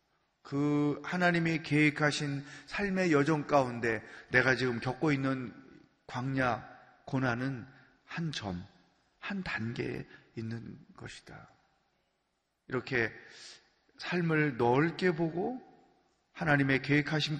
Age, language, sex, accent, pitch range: 30-49, Korean, male, native, 135-175 Hz